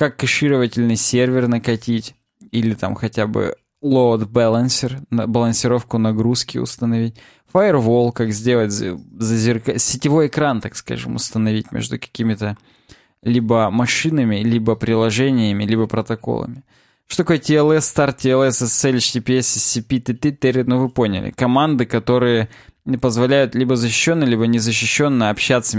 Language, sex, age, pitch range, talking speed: Russian, male, 20-39, 115-140 Hz, 115 wpm